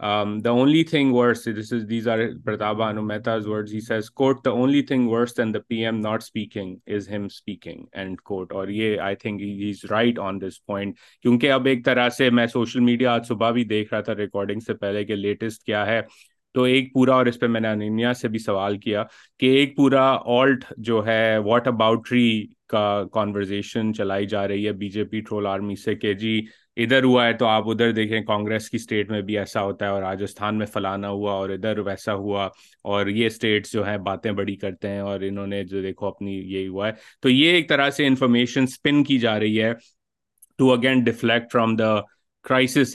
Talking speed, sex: 180 wpm, male